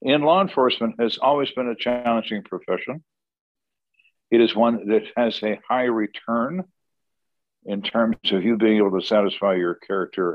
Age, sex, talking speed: 60-79, male, 155 wpm